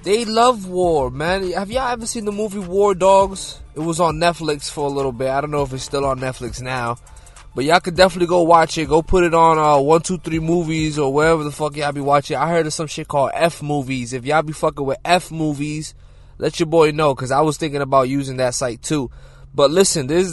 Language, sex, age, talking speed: English, male, 20-39, 240 wpm